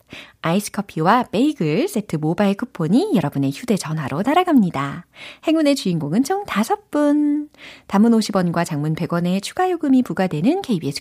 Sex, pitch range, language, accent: female, 165-275 Hz, Korean, native